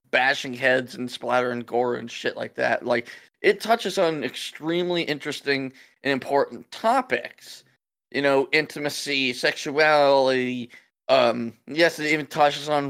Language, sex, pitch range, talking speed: English, male, 130-165 Hz, 135 wpm